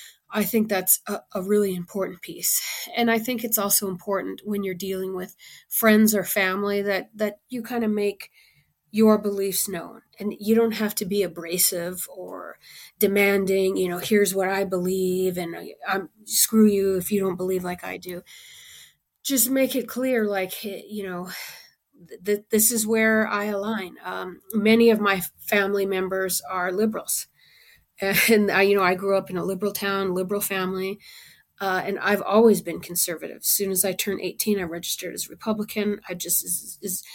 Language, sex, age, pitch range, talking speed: English, female, 30-49, 185-210 Hz, 180 wpm